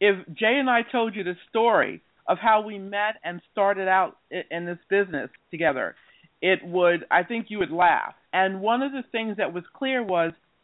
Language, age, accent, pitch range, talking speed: English, 50-69, American, 180-220 Hz, 205 wpm